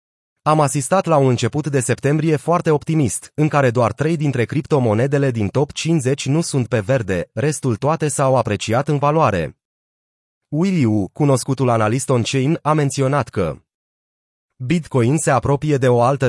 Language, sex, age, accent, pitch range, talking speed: Romanian, male, 30-49, native, 120-150 Hz, 150 wpm